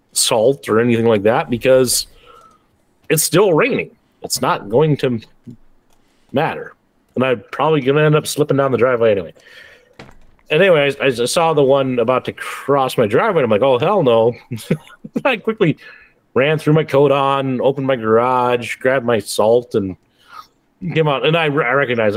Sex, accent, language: male, American, English